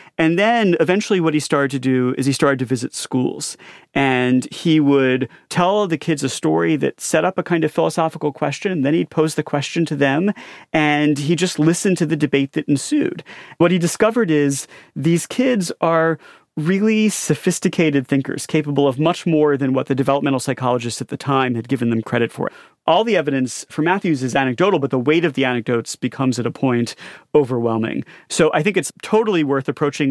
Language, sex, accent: English, male, American